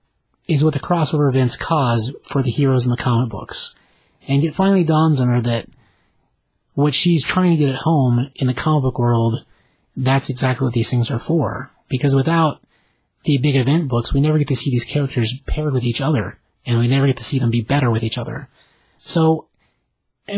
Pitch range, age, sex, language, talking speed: 125-150 Hz, 30-49, male, English, 205 wpm